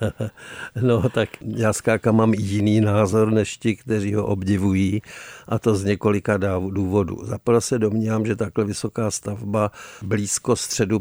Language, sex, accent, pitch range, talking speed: Czech, male, native, 105-115 Hz, 145 wpm